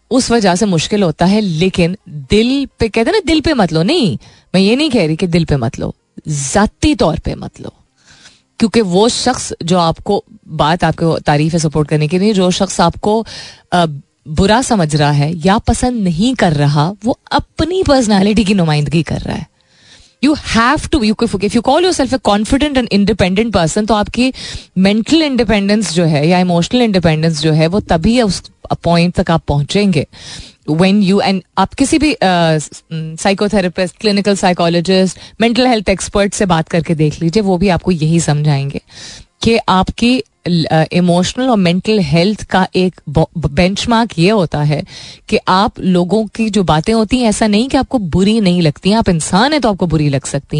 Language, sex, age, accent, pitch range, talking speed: Hindi, female, 30-49, native, 165-225 Hz, 180 wpm